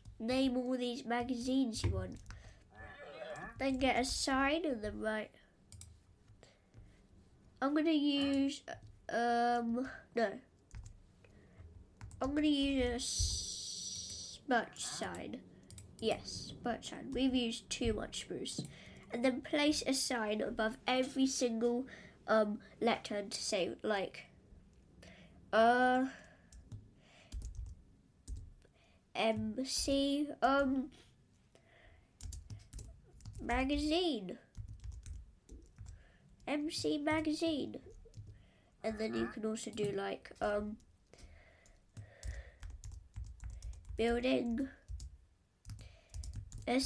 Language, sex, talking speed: English, female, 75 wpm